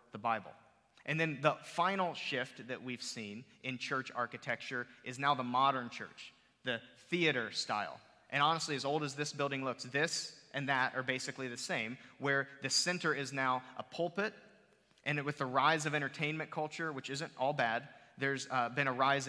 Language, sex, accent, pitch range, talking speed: English, male, American, 125-155 Hz, 185 wpm